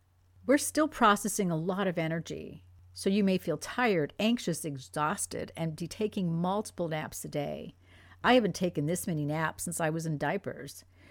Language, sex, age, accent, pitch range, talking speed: English, female, 50-69, American, 150-215 Hz, 175 wpm